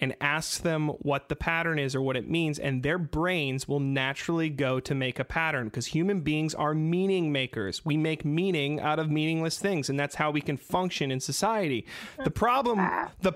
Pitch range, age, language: 140-175 Hz, 30-49, English